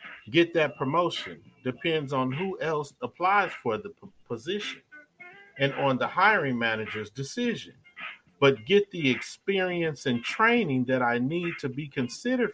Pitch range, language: 125-180 Hz, English